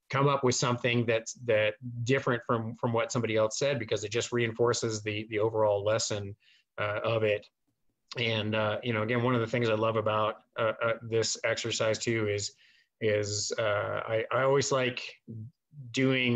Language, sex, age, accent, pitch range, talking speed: English, male, 30-49, American, 105-120 Hz, 180 wpm